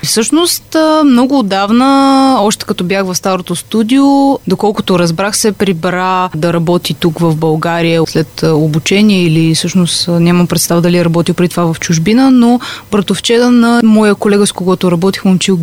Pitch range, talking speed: 175-235 Hz, 155 wpm